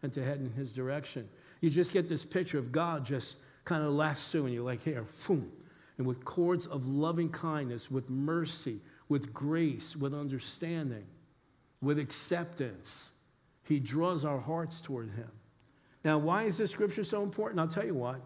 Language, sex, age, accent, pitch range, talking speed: English, male, 50-69, American, 135-185 Hz, 170 wpm